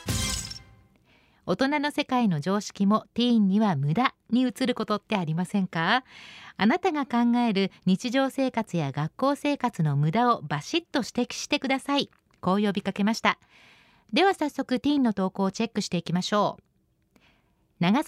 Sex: female